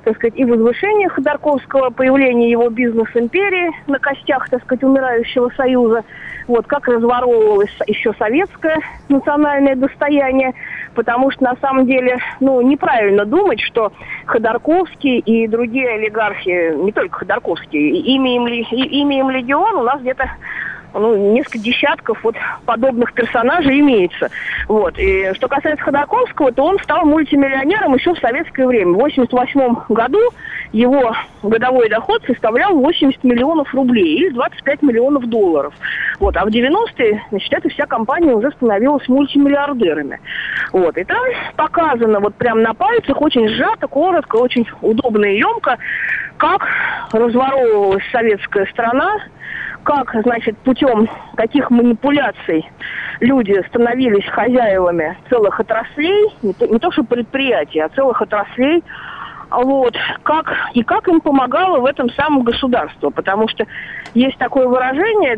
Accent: native